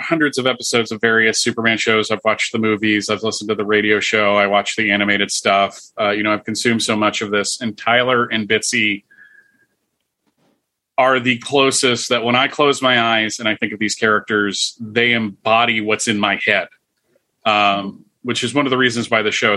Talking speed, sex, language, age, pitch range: 200 wpm, male, English, 30-49, 110-125 Hz